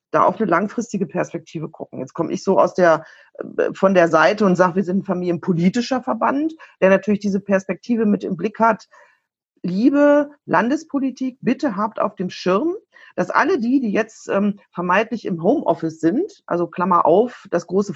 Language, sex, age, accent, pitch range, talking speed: German, female, 40-59, German, 170-225 Hz, 170 wpm